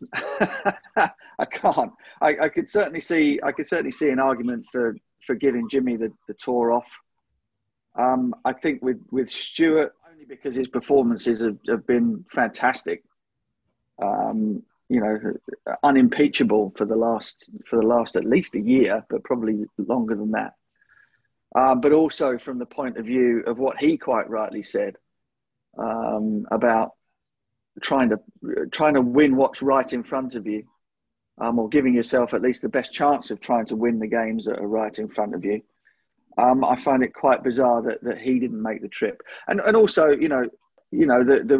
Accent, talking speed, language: British, 180 wpm, English